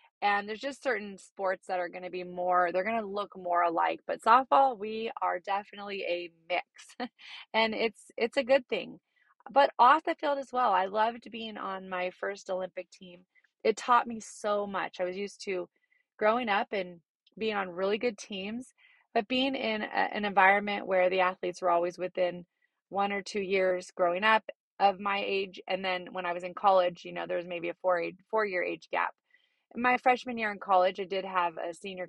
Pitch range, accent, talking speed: 180-220 Hz, American, 205 wpm